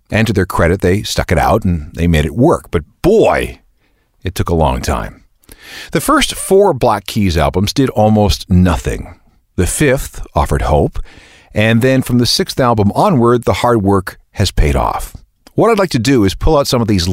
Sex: male